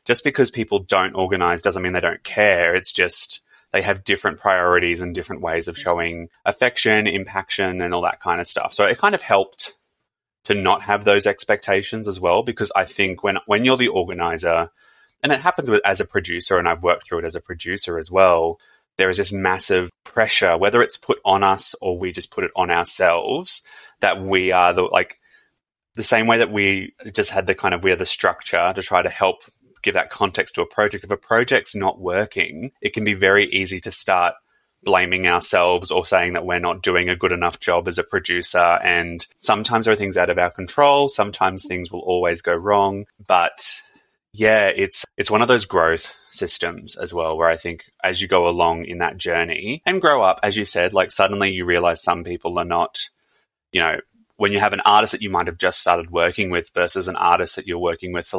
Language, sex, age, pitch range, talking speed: English, male, 20-39, 85-100 Hz, 220 wpm